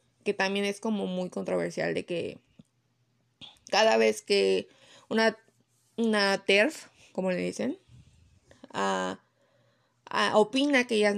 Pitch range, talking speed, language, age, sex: 195-255 Hz, 105 wpm, Spanish, 20-39, female